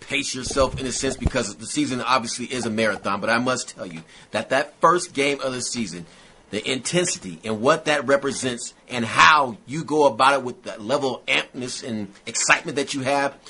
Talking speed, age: 205 wpm, 30-49